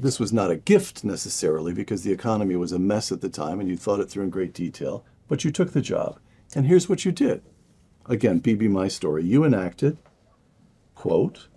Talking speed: 205 wpm